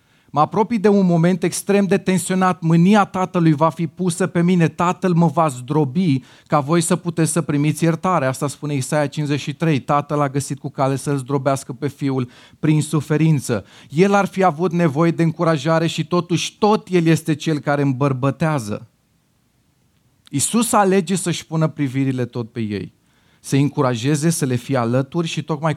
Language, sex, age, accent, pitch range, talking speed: Romanian, male, 30-49, native, 115-160 Hz, 170 wpm